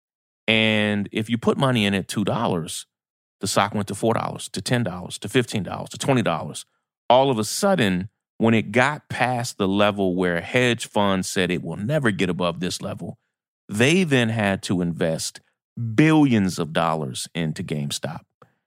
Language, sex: English, male